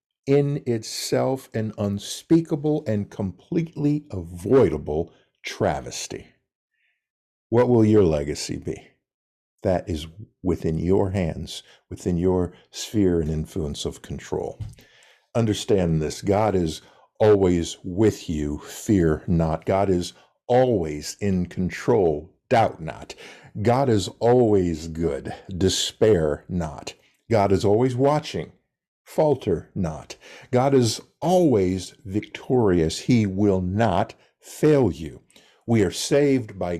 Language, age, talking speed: English, 50-69, 110 wpm